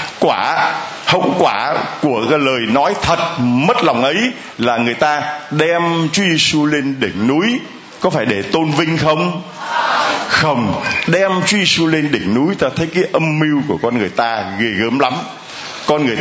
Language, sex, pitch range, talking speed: Vietnamese, male, 135-170 Hz, 175 wpm